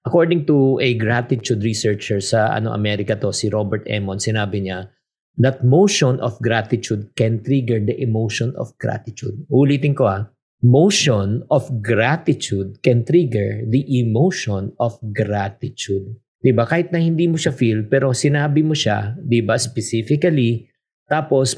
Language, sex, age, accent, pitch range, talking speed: Filipino, male, 50-69, native, 115-160 Hz, 140 wpm